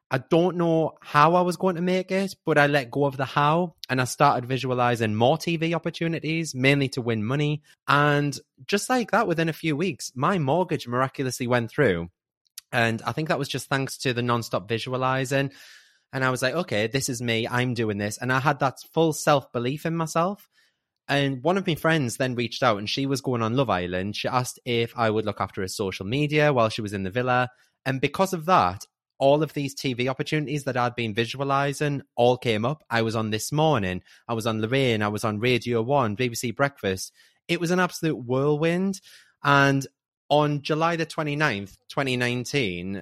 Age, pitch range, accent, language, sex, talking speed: 20-39, 115-150 Hz, British, English, male, 200 wpm